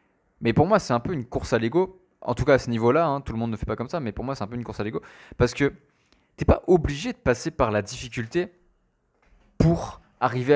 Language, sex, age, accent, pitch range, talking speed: French, male, 20-39, French, 105-135 Hz, 275 wpm